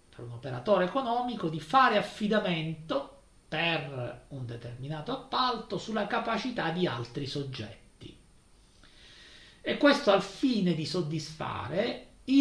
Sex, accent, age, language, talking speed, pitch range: male, native, 40-59, Italian, 105 wpm, 120-200 Hz